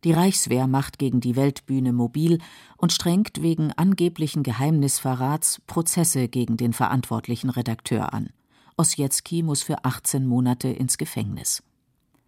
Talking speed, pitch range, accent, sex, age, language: 120 wpm, 125-155 Hz, German, female, 50-69, German